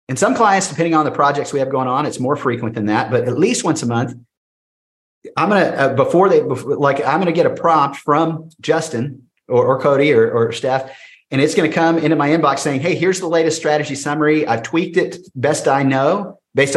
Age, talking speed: 40-59, 220 wpm